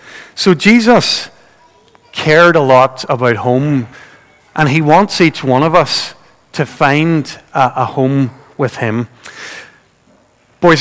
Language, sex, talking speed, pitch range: English, male, 115 wpm, 135-175 Hz